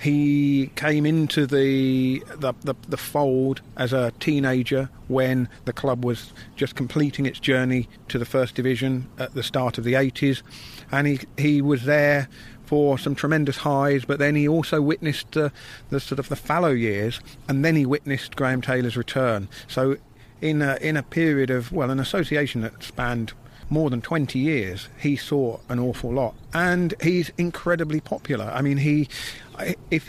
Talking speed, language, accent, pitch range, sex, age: 170 wpm, English, British, 120-145 Hz, male, 40-59